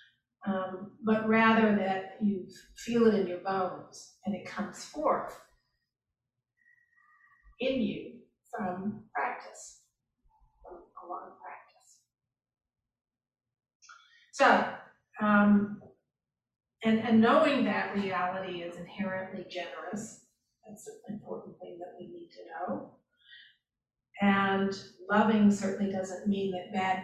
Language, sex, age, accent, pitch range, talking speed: English, female, 40-59, American, 180-215 Hz, 110 wpm